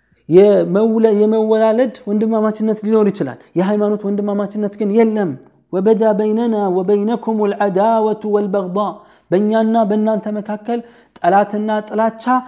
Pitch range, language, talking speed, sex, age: 190-220 Hz, Amharic, 130 wpm, male, 30-49